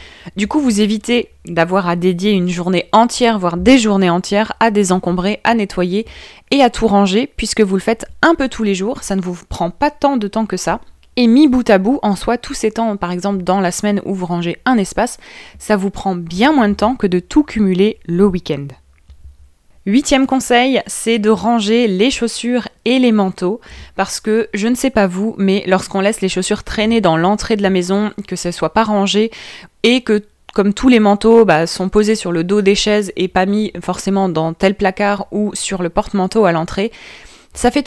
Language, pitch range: French, 185-225 Hz